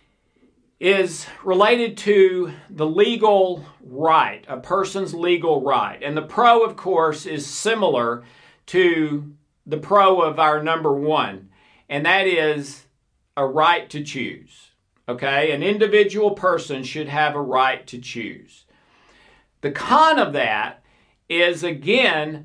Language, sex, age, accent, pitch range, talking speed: English, male, 50-69, American, 135-185 Hz, 125 wpm